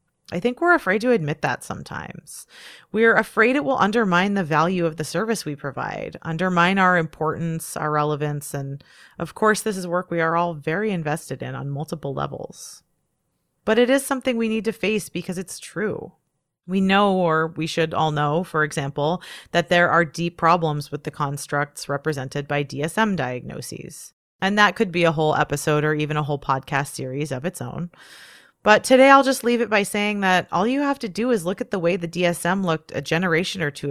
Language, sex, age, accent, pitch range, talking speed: English, female, 30-49, American, 150-210 Hz, 200 wpm